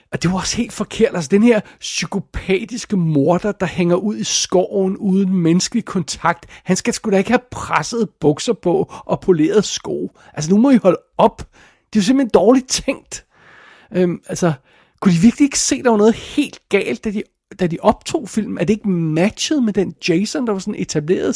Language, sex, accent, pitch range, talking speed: Danish, male, native, 165-215 Hz, 205 wpm